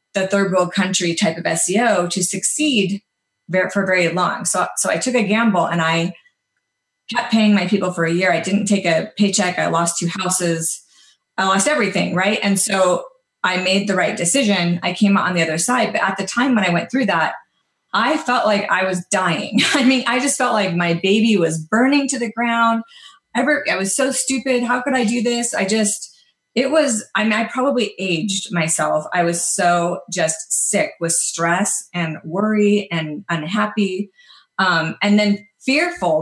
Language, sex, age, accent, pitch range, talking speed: English, female, 30-49, American, 175-220 Hz, 190 wpm